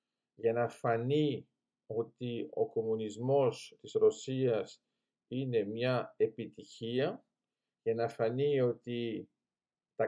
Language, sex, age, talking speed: Greek, male, 50-69, 95 wpm